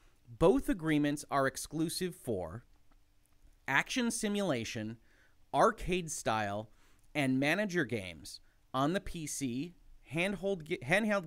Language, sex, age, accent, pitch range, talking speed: English, male, 30-49, American, 120-170 Hz, 85 wpm